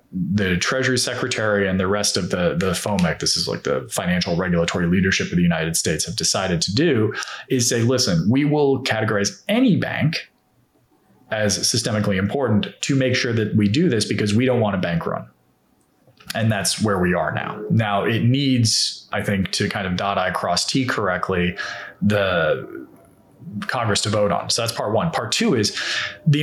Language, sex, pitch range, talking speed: English, male, 100-130 Hz, 185 wpm